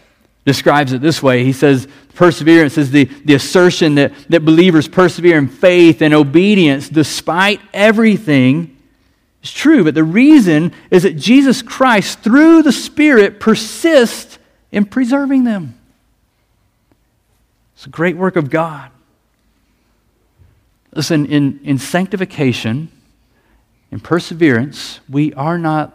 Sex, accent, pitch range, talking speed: male, American, 125-170 Hz, 120 wpm